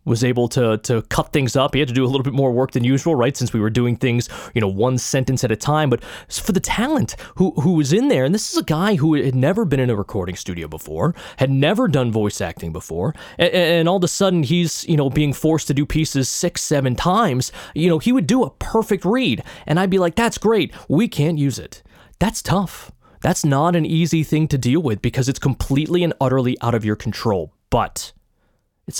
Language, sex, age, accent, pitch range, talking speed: English, male, 20-39, American, 125-185 Hz, 240 wpm